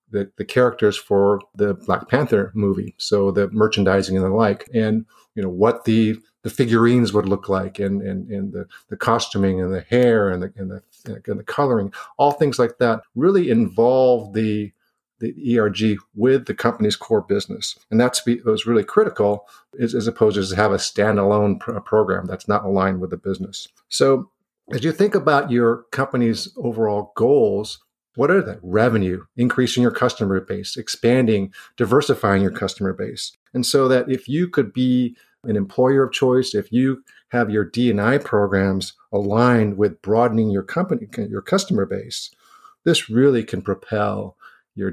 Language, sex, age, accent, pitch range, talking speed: English, male, 50-69, American, 100-125 Hz, 170 wpm